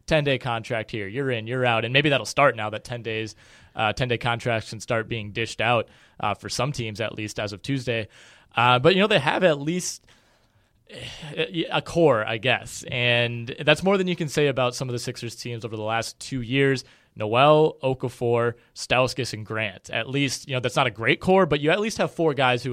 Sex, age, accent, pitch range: male, 20-39, American, 115-140 Hz